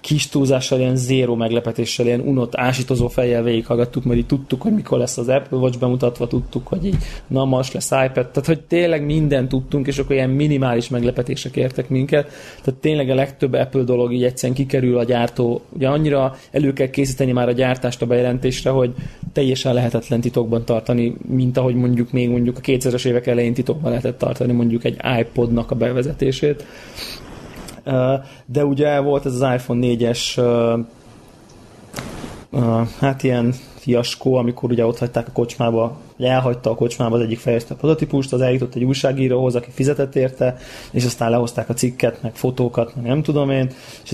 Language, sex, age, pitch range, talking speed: Hungarian, male, 20-39, 120-135 Hz, 170 wpm